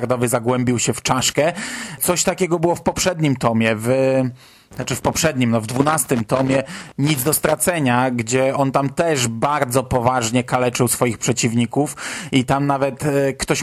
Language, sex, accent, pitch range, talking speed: Polish, male, native, 130-165 Hz, 145 wpm